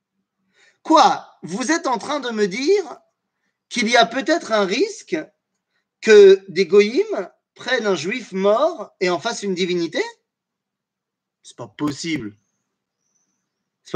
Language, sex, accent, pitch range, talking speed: French, male, French, 180-270 Hz, 130 wpm